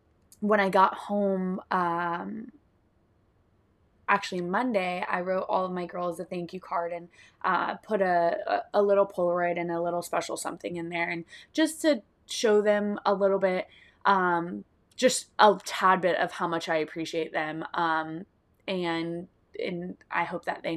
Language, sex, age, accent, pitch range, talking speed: English, female, 20-39, American, 165-190 Hz, 165 wpm